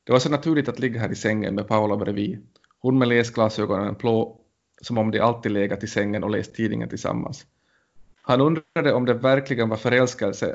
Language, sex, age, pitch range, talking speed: Finnish, male, 30-49, 110-130 Hz, 195 wpm